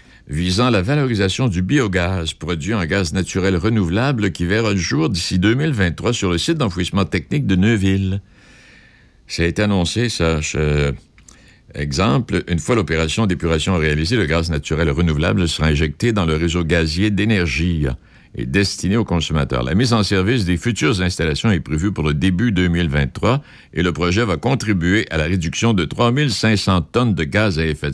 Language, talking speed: French, 165 wpm